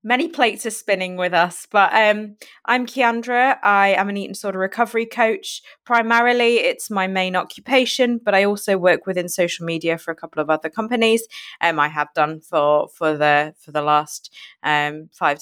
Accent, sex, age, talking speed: British, female, 20-39, 185 wpm